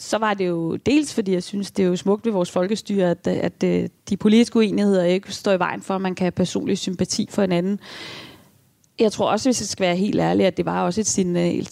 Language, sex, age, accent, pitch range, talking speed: Danish, female, 30-49, native, 175-200 Hz, 245 wpm